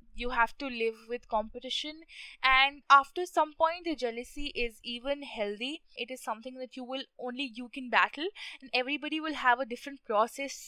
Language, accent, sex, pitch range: English, Indian, female, 230-280 Hz